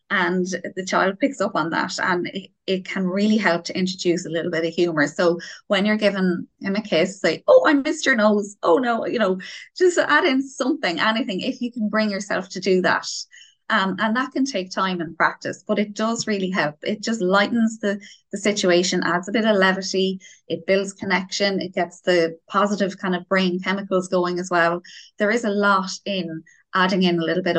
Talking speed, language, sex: 215 wpm, English, female